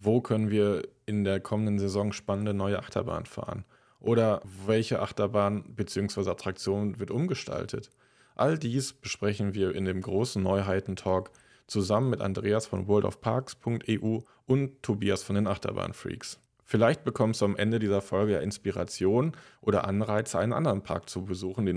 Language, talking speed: German, 145 wpm